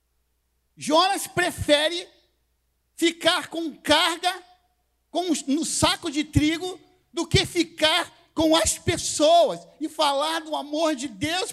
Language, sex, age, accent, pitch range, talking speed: Portuguese, male, 50-69, Brazilian, 225-325 Hz, 120 wpm